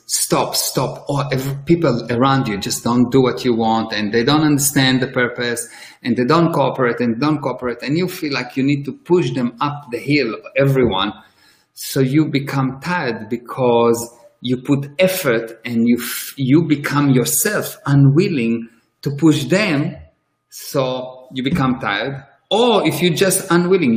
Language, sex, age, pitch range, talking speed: English, male, 50-69, 120-150 Hz, 165 wpm